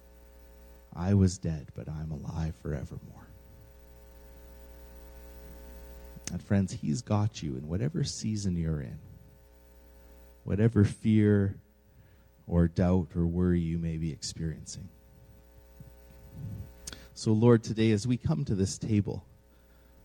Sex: male